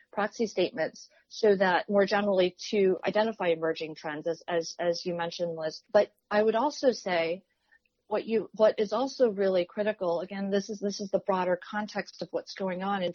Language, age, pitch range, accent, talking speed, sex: English, 40-59, 175-205 Hz, American, 185 wpm, female